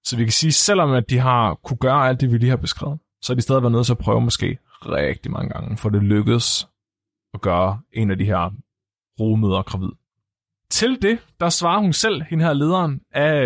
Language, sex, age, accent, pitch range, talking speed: Danish, male, 30-49, native, 105-145 Hz, 225 wpm